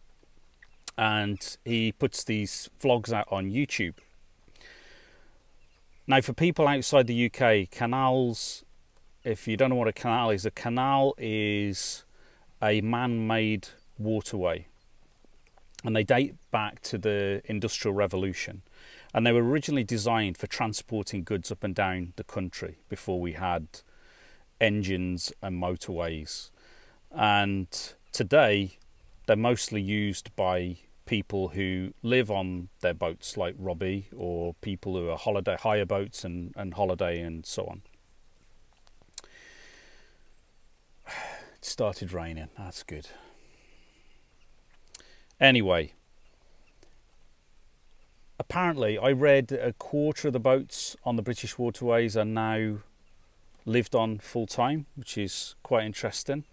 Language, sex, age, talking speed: English, male, 30-49, 120 wpm